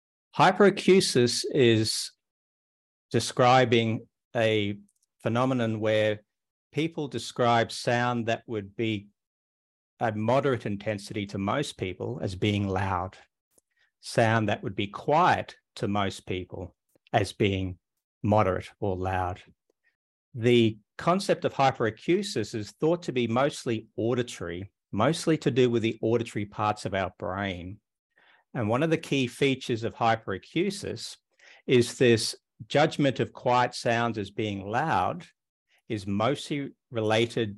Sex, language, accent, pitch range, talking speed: male, English, Australian, 100-125 Hz, 120 wpm